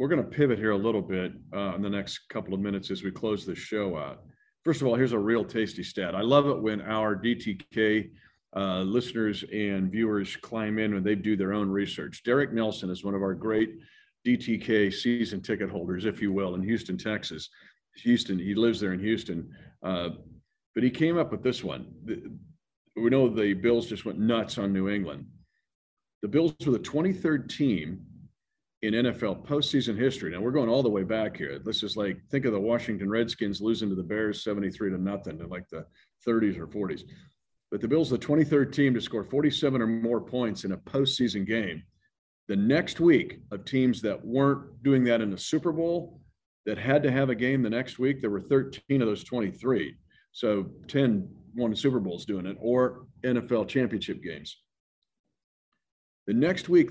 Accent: American